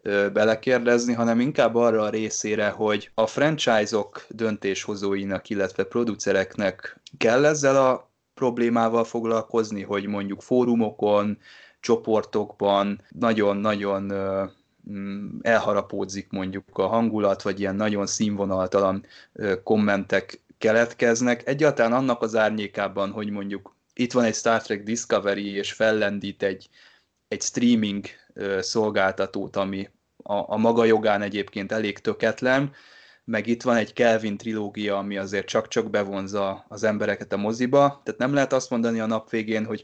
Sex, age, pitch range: male, 20-39, 100-115 Hz